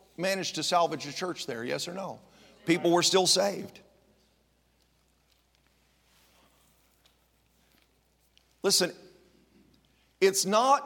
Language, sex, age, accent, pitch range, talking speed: English, male, 50-69, American, 125-170 Hz, 90 wpm